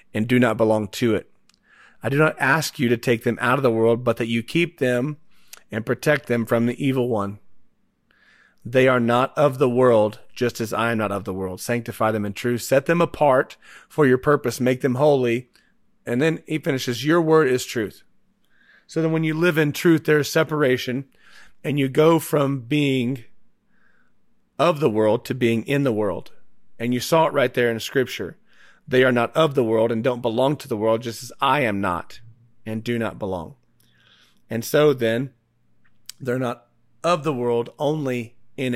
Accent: American